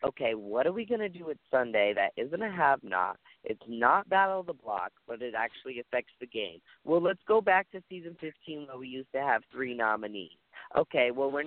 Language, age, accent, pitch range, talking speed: English, 30-49, American, 130-170 Hz, 220 wpm